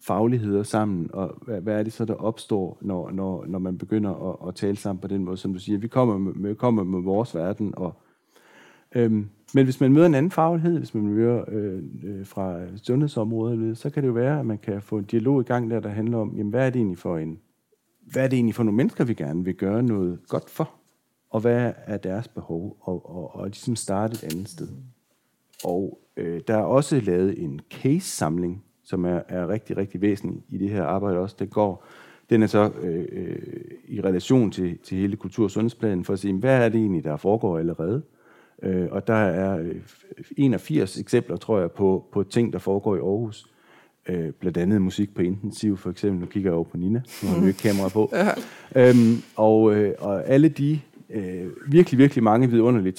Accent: native